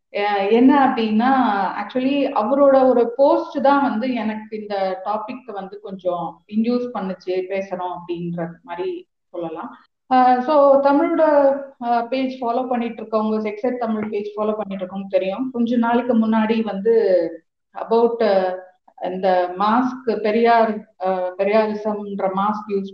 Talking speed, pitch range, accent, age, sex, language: 95 wpm, 185-225 Hz, native, 30-49, female, Tamil